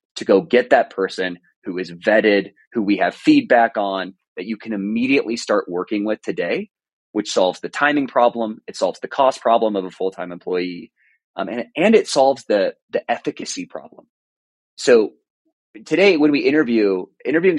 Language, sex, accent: English, male, American